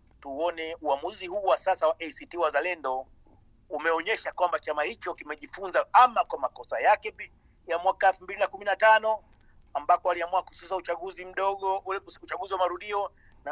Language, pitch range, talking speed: Swahili, 160-205 Hz, 140 wpm